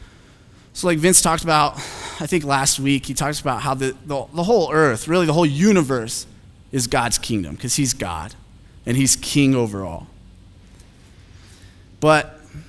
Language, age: English, 20-39